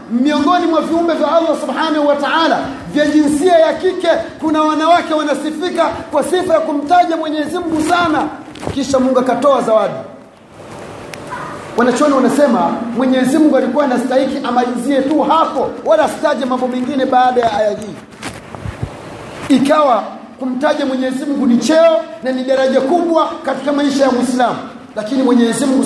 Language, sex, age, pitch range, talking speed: Swahili, male, 40-59, 245-300 Hz, 135 wpm